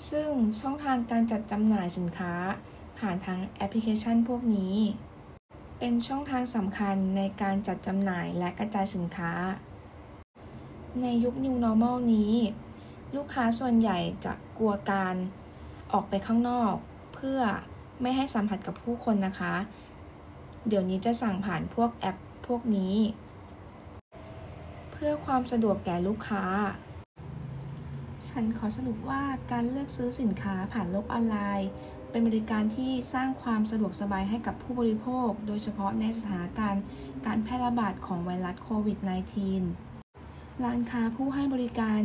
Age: 20-39